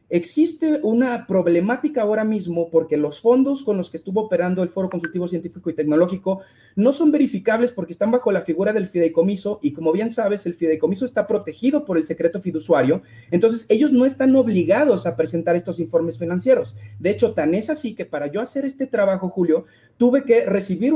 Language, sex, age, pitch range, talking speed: Spanish, male, 40-59, 170-240 Hz, 190 wpm